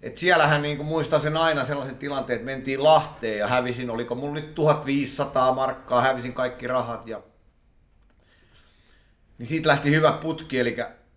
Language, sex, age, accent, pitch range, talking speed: Finnish, male, 30-49, native, 110-145 Hz, 145 wpm